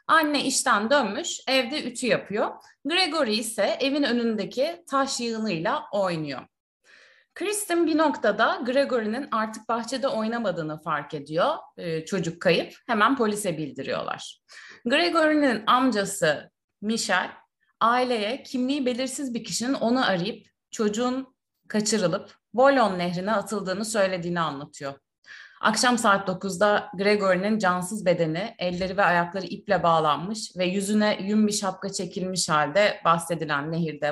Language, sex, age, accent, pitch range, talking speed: Turkish, female, 30-49, native, 180-250 Hz, 115 wpm